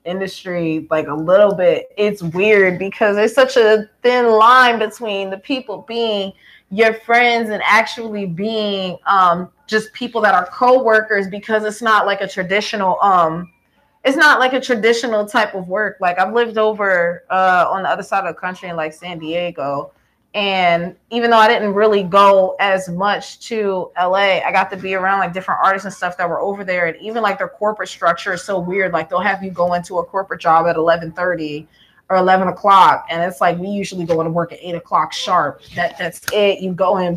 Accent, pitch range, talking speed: American, 180-215 Hz, 200 wpm